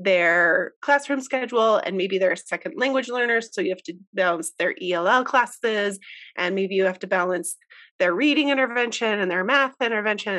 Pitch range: 195-290 Hz